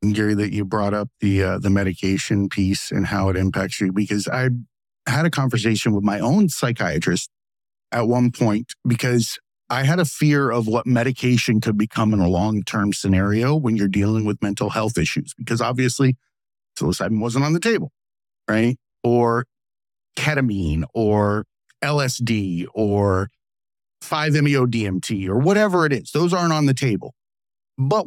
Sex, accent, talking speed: male, American, 155 wpm